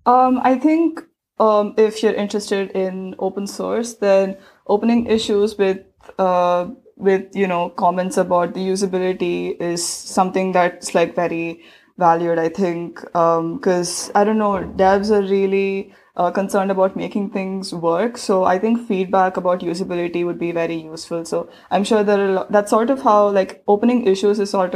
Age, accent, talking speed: 20-39, Indian, 170 wpm